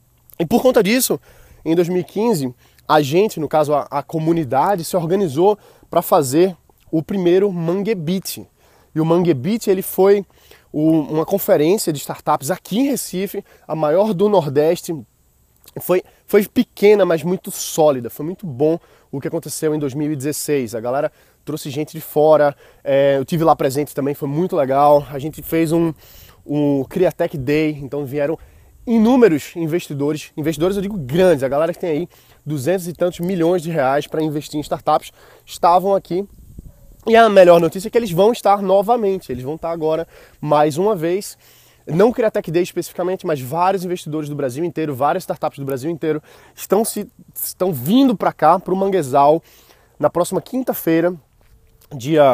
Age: 20-39